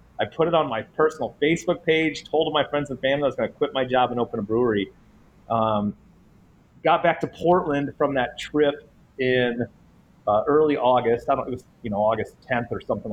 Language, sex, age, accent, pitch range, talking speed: English, male, 30-49, American, 120-150 Hz, 215 wpm